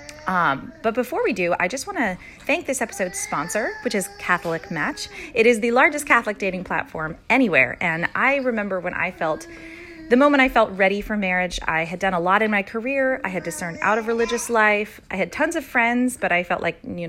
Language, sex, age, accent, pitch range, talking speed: English, female, 30-49, American, 175-235 Hz, 220 wpm